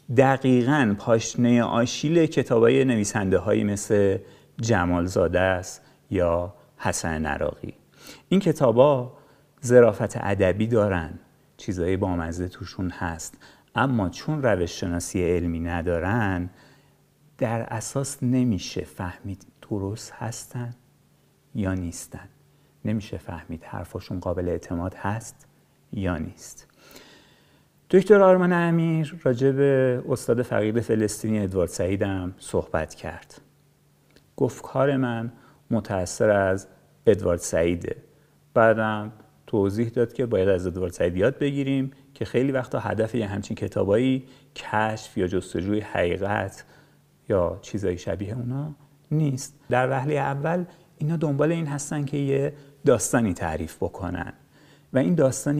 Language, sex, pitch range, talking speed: English, male, 95-140 Hz, 110 wpm